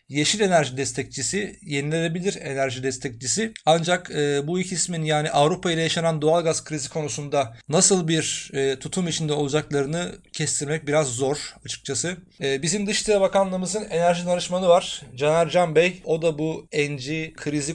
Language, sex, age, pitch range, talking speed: Turkish, male, 30-49, 145-175 Hz, 150 wpm